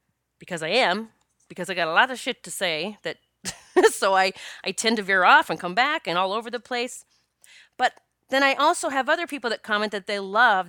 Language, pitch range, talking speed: English, 175-250 Hz, 225 wpm